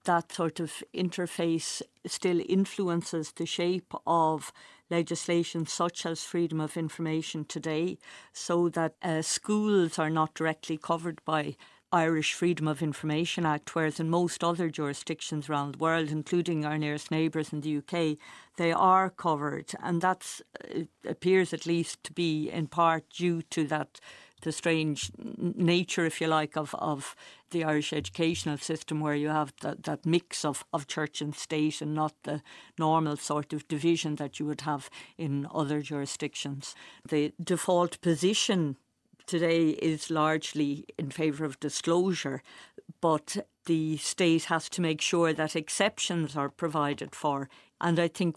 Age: 50-69